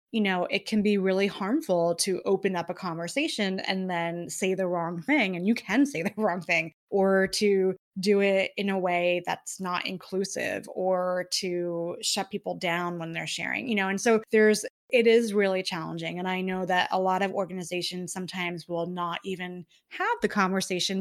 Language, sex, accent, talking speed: English, female, American, 190 wpm